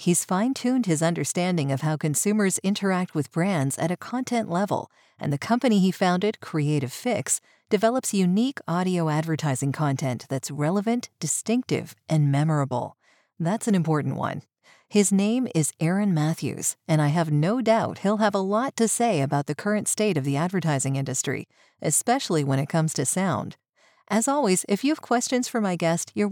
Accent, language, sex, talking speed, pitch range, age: American, English, female, 170 wpm, 155-215 Hz, 40-59